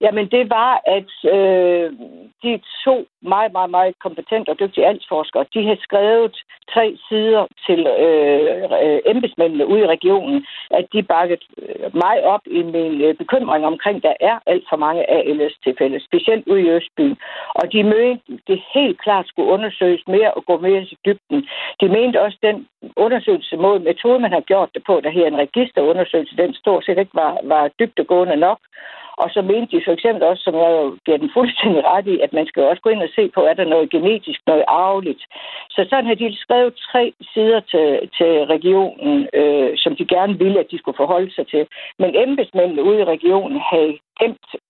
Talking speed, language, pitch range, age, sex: 190 wpm, Danish, 175-250 Hz, 60-79, female